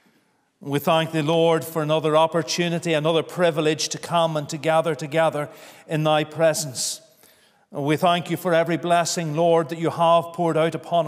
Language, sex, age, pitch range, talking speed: English, male, 40-59, 155-185 Hz, 170 wpm